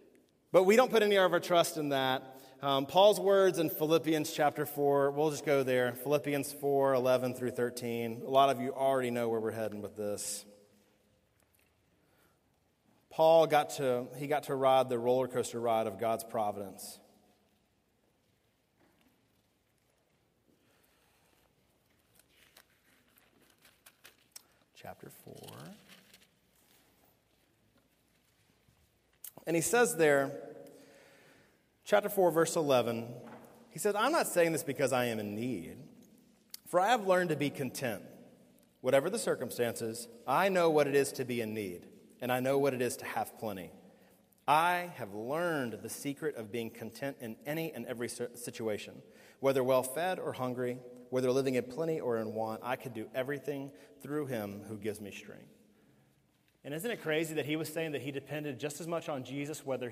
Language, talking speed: English, 150 wpm